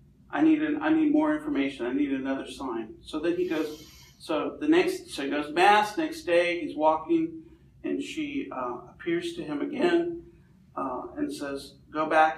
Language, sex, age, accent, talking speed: English, male, 50-69, American, 185 wpm